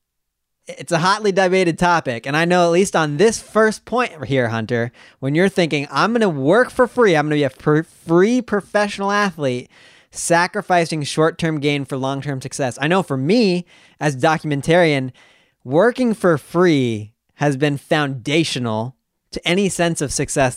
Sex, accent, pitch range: male, American, 130-170 Hz